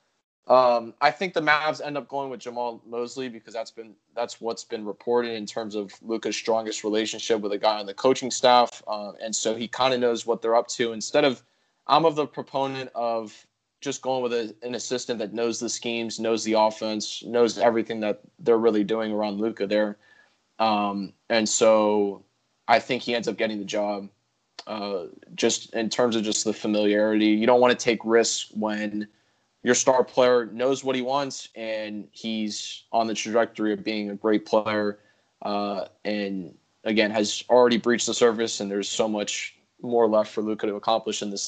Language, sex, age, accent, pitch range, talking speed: English, male, 20-39, American, 105-120 Hz, 195 wpm